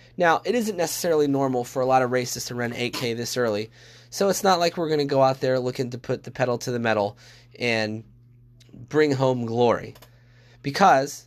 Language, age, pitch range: English, 20-39, 120-150 Hz